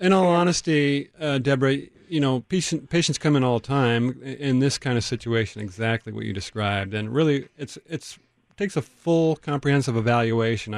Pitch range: 115-140 Hz